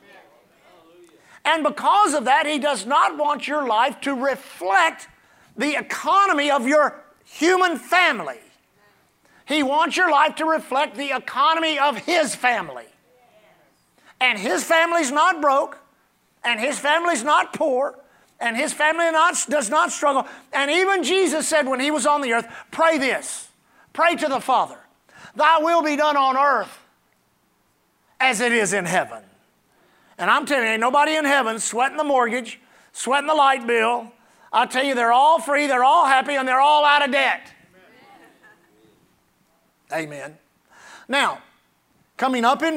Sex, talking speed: male, 150 wpm